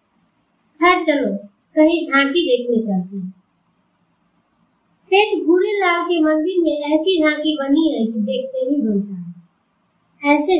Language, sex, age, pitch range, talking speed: Hindi, female, 20-39, 205-315 Hz, 115 wpm